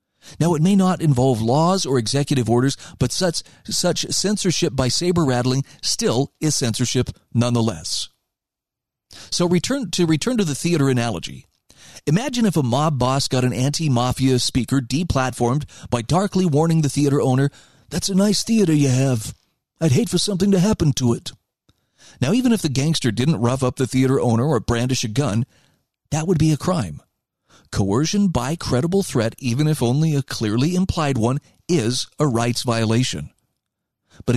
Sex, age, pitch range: male, 40-59, 125-170 Hz